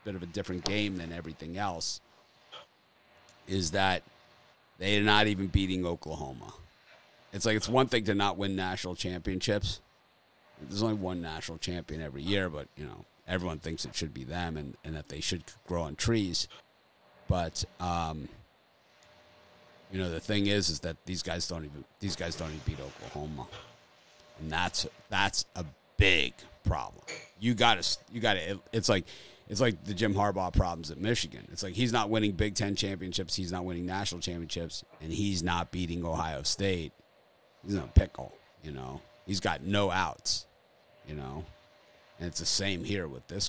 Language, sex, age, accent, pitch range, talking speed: English, male, 50-69, American, 80-100 Hz, 180 wpm